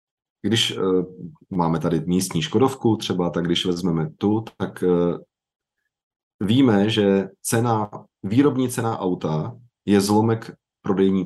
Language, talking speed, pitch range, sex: Czech, 100 wpm, 90-115 Hz, male